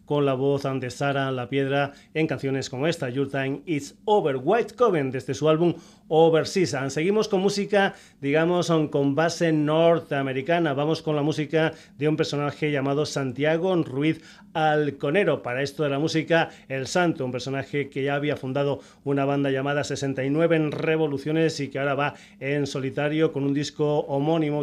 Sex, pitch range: male, 140-160 Hz